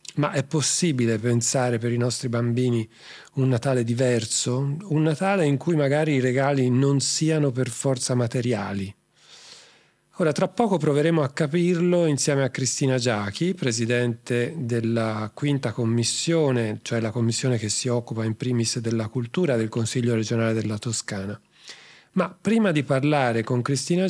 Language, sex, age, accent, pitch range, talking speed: Italian, male, 40-59, native, 120-160 Hz, 145 wpm